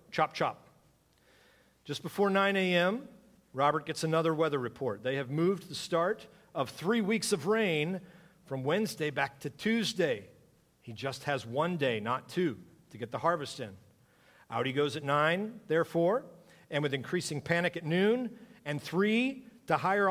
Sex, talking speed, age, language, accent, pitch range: male, 160 wpm, 50-69, English, American, 130-185 Hz